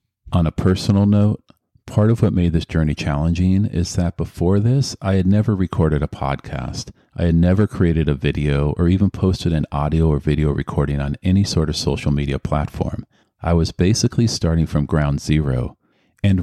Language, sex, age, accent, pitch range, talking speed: English, male, 40-59, American, 75-95 Hz, 185 wpm